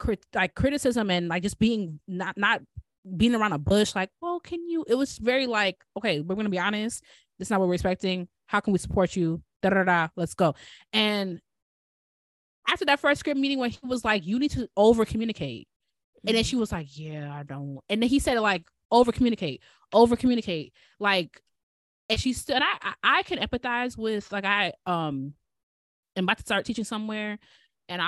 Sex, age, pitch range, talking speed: female, 20-39, 170-225 Hz, 200 wpm